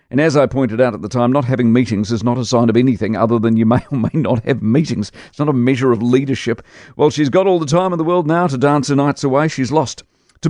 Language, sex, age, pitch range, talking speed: English, male, 50-69, 110-135 Hz, 285 wpm